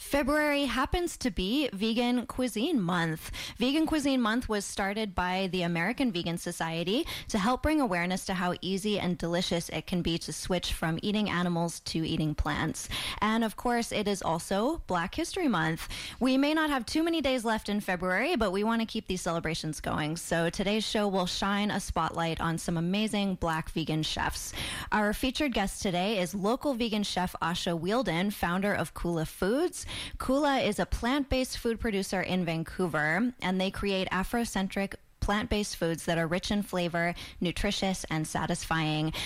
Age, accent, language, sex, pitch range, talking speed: 20-39, American, English, female, 170-230 Hz, 175 wpm